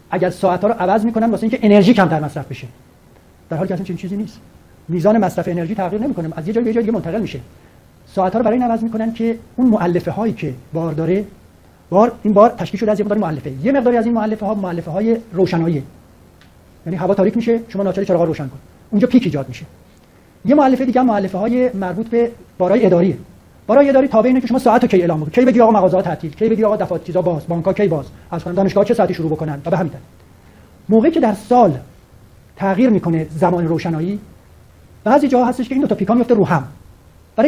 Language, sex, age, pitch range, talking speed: Persian, male, 40-59, 170-230 Hz, 215 wpm